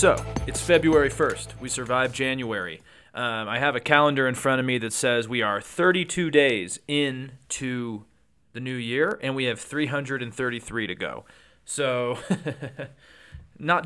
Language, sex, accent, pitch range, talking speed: English, male, American, 120-145 Hz, 145 wpm